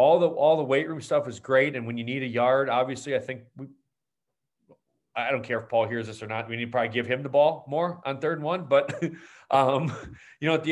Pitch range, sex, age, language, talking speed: 115-135 Hz, male, 30-49, English, 270 wpm